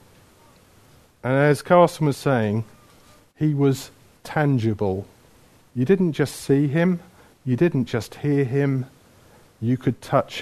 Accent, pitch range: British, 125-165 Hz